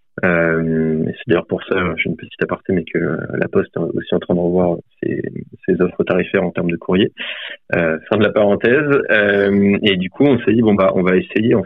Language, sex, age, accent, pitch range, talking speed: French, male, 30-49, French, 90-115 Hz, 230 wpm